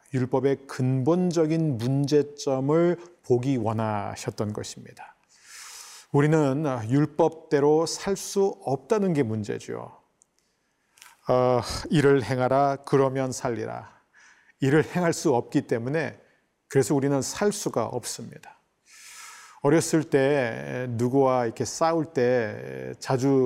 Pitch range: 120-160 Hz